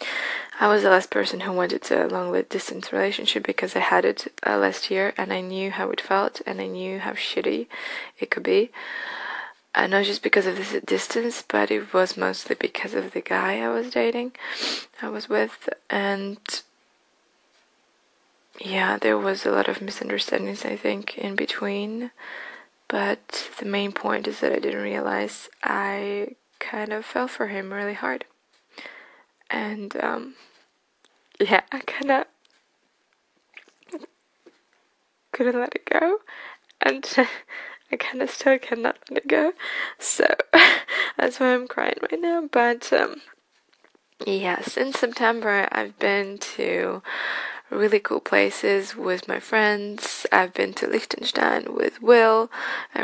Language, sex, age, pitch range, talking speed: English, female, 20-39, 195-255 Hz, 145 wpm